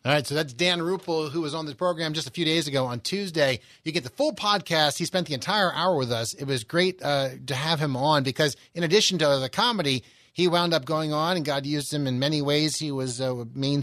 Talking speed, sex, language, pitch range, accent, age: 260 wpm, male, English, 135-170 Hz, American, 30-49